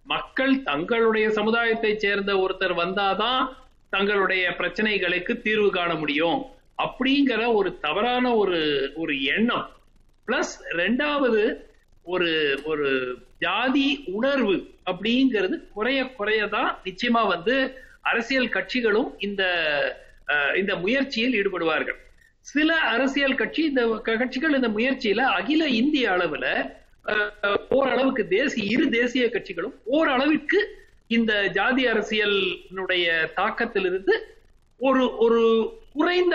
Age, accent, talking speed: 60-79, native, 95 wpm